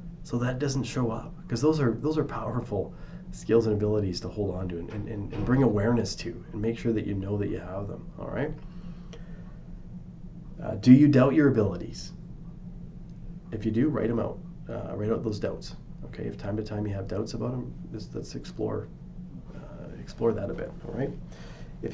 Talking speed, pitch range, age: 195 wpm, 100-130 Hz, 30-49